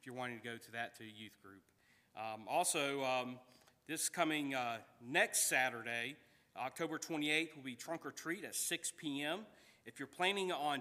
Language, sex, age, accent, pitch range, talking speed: English, male, 40-59, American, 115-145 Hz, 185 wpm